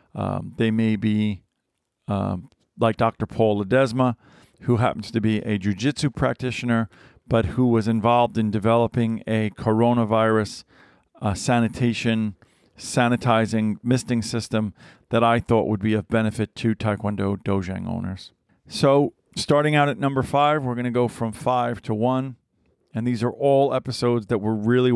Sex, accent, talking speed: male, American, 150 wpm